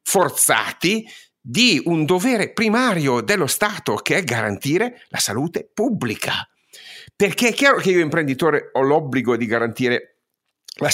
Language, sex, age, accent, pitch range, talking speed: Italian, male, 50-69, native, 125-180 Hz, 130 wpm